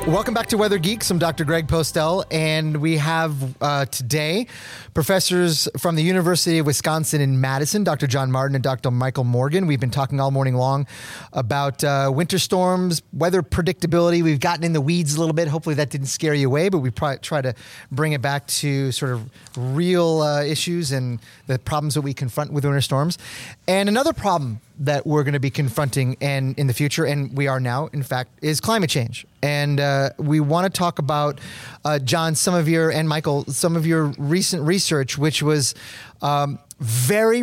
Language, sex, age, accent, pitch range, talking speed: English, male, 30-49, American, 135-165 Hz, 195 wpm